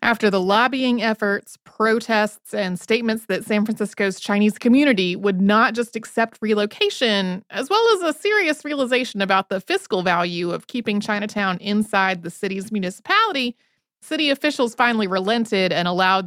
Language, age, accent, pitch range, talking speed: English, 30-49, American, 195-245 Hz, 150 wpm